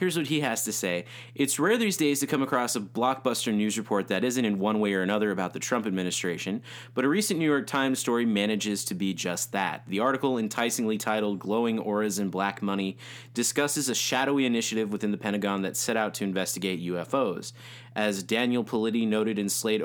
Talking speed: 205 wpm